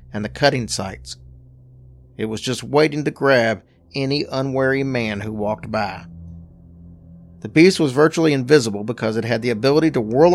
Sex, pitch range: male, 105-150 Hz